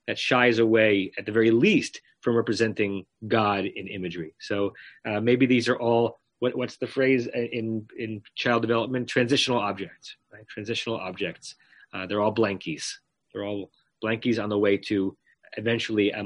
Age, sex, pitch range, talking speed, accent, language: 30-49, male, 110-140 Hz, 160 wpm, American, English